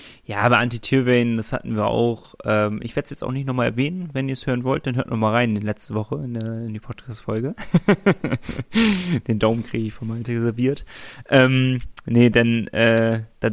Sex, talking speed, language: male, 195 wpm, German